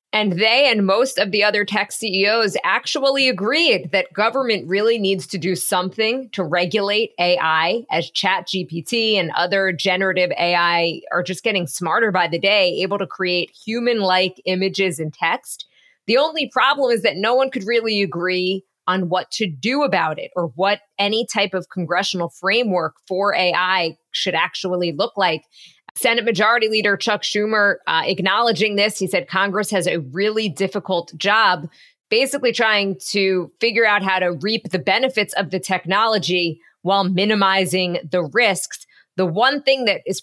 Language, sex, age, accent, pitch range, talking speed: English, female, 20-39, American, 180-220 Hz, 165 wpm